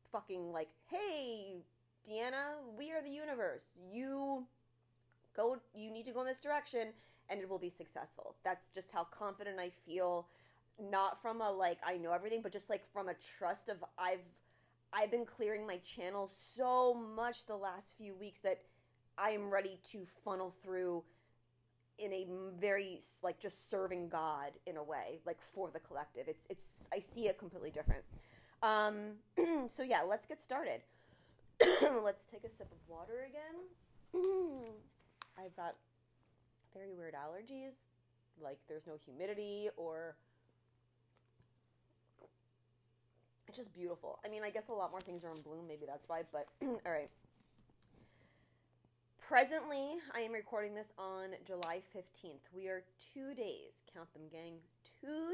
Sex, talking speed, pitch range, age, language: female, 150 wpm, 155-225 Hz, 20-39, English